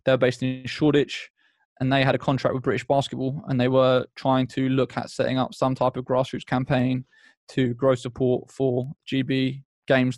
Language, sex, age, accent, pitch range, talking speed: English, male, 20-39, British, 130-140 Hz, 190 wpm